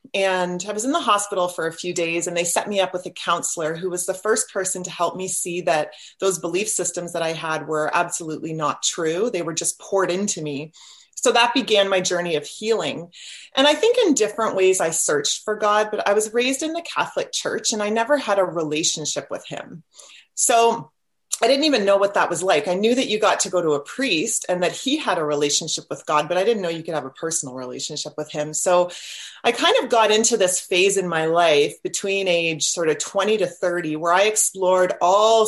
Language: English